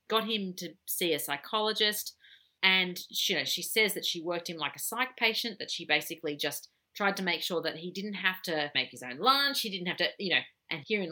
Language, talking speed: English, 230 wpm